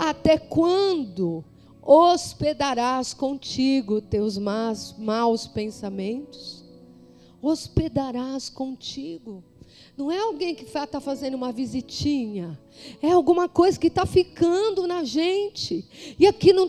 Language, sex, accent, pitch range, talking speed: Portuguese, female, Brazilian, 275-340 Hz, 100 wpm